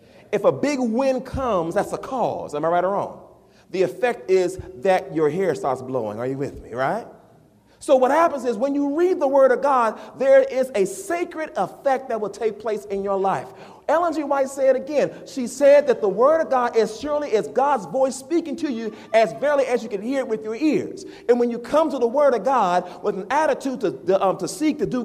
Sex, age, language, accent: male, 40-59, English, American